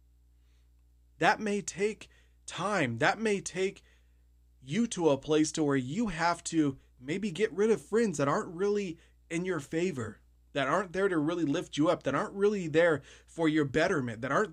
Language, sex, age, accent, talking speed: English, male, 30-49, American, 180 wpm